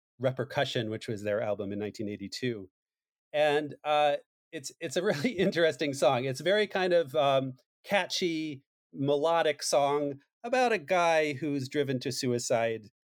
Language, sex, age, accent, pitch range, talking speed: English, male, 40-59, American, 125-155 Hz, 145 wpm